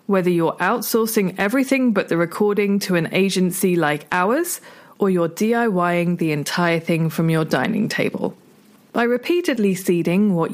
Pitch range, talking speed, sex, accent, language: 175-230 Hz, 150 wpm, female, British, English